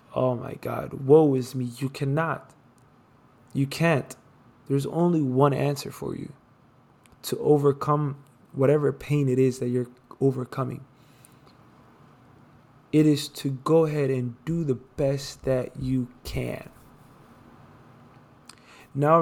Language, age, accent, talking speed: English, 20-39, American, 120 wpm